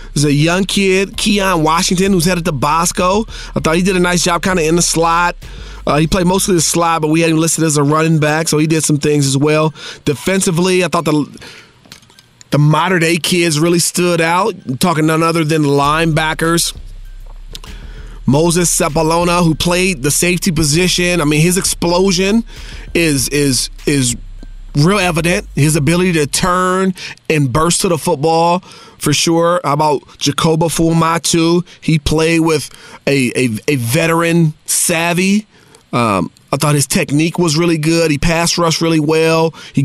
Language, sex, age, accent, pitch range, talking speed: English, male, 30-49, American, 150-175 Hz, 175 wpm